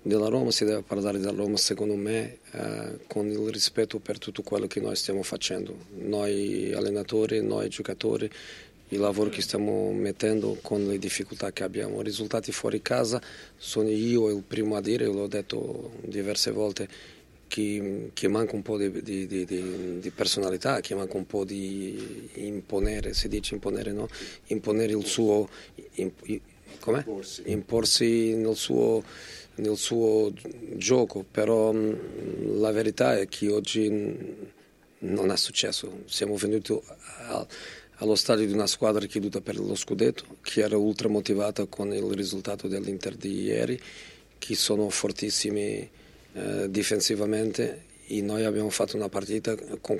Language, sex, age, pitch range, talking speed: Italian, male, 40-59, 100-110 Hz, 145 wpm